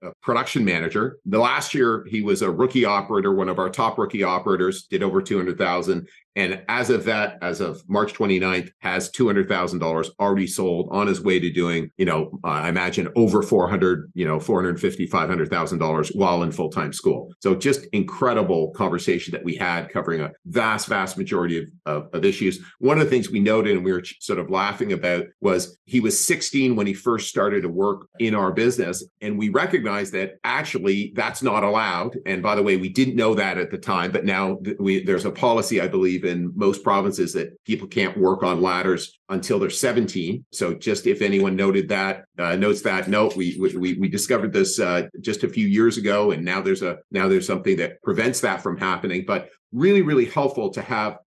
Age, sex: 40-59, male